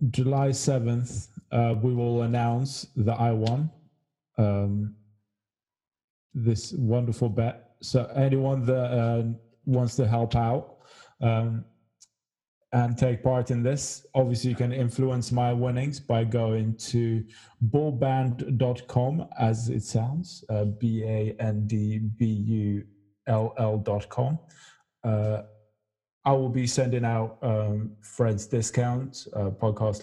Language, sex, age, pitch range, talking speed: English, male, 20-39, 110-130 Hz, 105 wpm